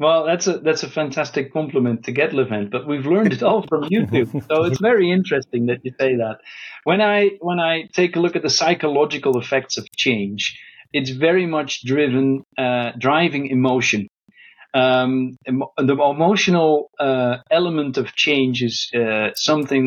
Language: English